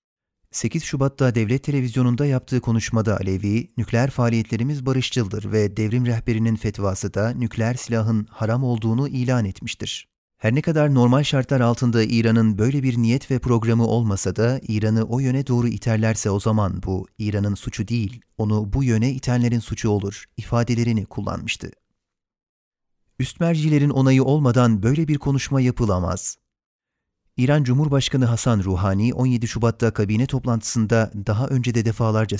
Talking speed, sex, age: 135 wpm, male, 40-59